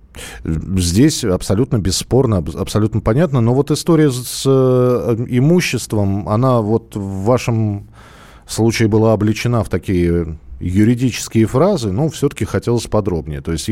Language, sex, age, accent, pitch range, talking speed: Russian, male, 40-59, native, 90-125 Hz, 120 wpm